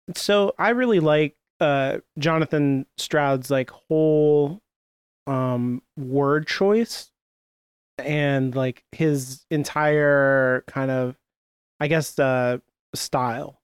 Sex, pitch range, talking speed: male, 125-145 Hz, 100 wpm